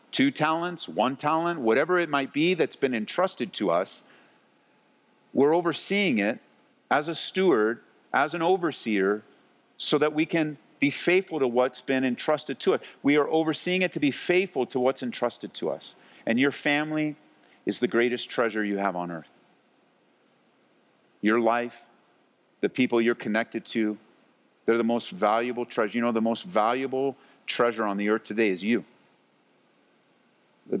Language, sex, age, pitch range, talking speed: English, male, 50-69, 105-135 Hz, 160 wpm